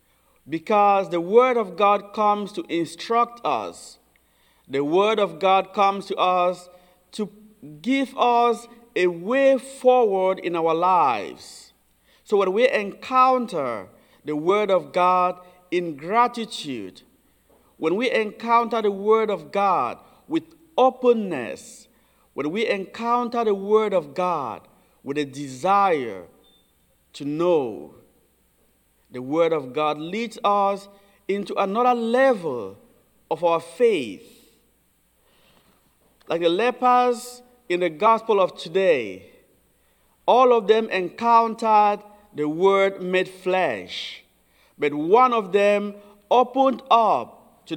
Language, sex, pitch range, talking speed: English, male, 180-235 Hz, 115 wpm